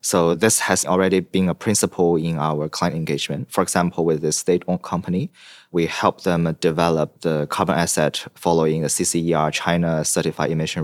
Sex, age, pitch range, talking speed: male, 20-39, 75-90 Hz, 165 wpm